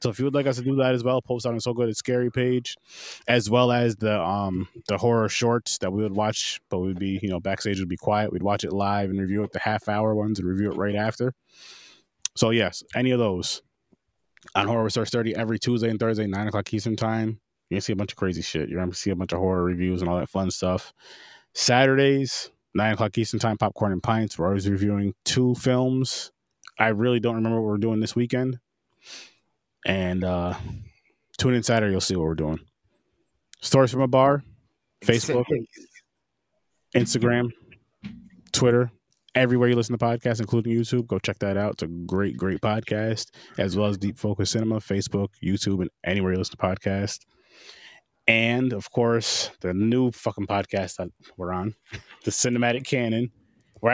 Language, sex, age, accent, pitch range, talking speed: English, male, 20-39, American, 100-120 Hz, 195 wpm